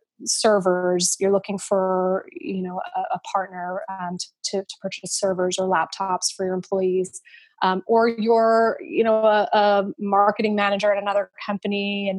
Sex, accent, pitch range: female, American, 190-225 Hz